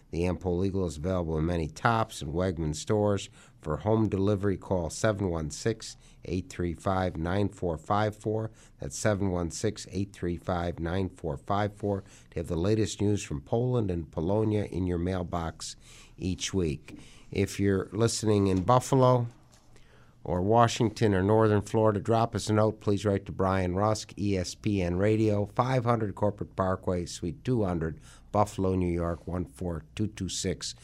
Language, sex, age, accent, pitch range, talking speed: English, male, 60-79, American, 85-110 Hz, 130 wpm